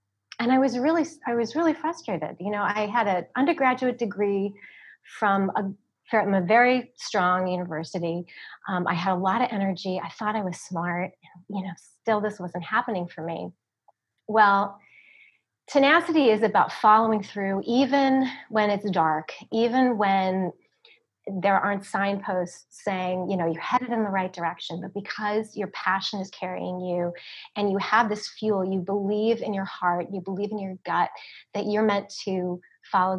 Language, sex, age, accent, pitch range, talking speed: English, female, 30-49, American, 185-235 Hz, 170 wpm